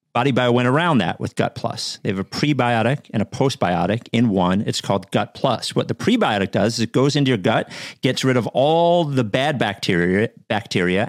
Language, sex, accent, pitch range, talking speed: English, male, American, 105-135 Hz, 210 wpm